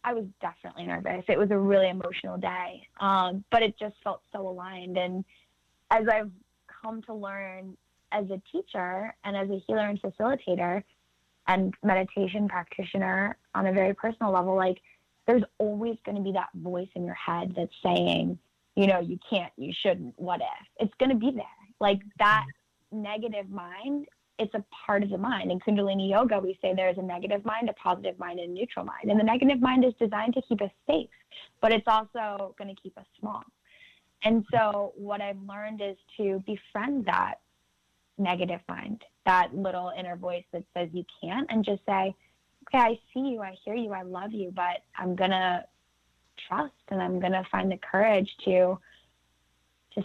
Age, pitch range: 20-39, 180-215 Hz